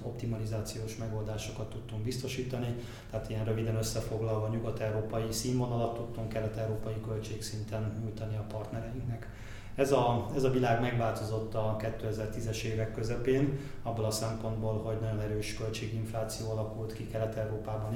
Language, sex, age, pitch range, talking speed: Hungarian, male, 20-39, 110-115 Hz, 120 wpm